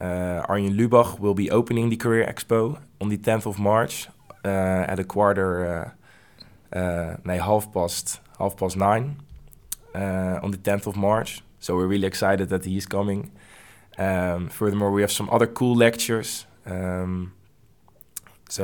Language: English